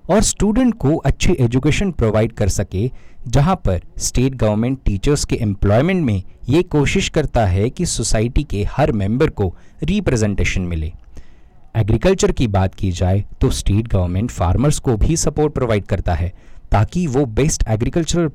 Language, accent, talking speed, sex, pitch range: Hindi, native, 155 wpm, male, 95-140 Hz